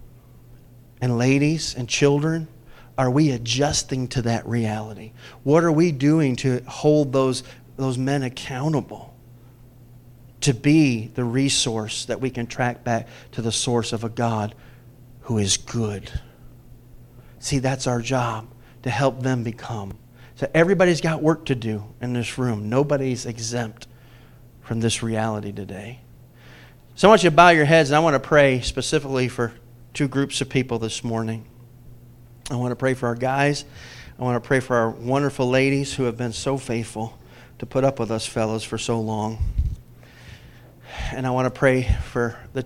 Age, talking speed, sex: 40-59, 165 wpm, male